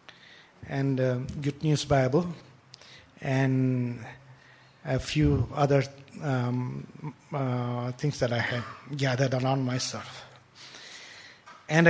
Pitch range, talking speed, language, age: 130-180 Hz, 95 wpm, English, 50-69